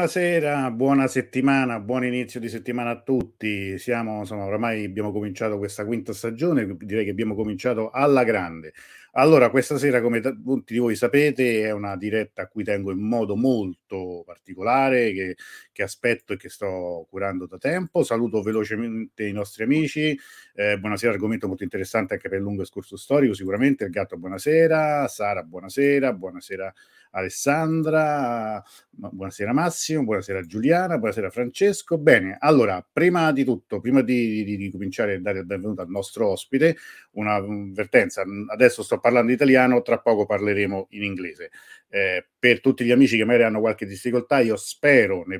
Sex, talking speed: male, 160 wpm